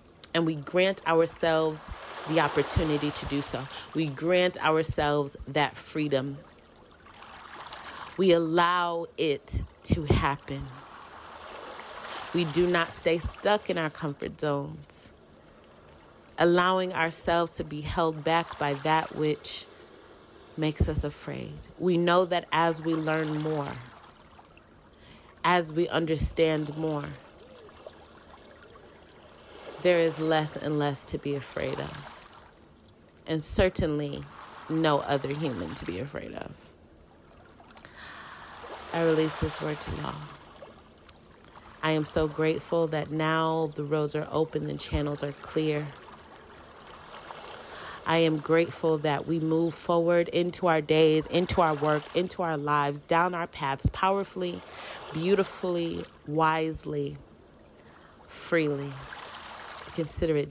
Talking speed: 115 wpm